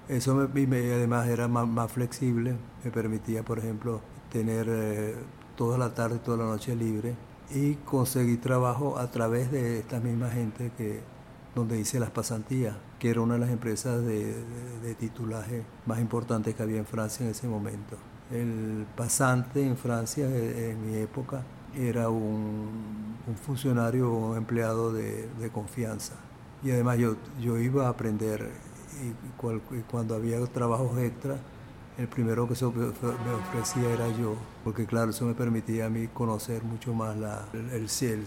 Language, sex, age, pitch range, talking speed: Spanish, male, 60-79, 115-125 Hz, 170 wpm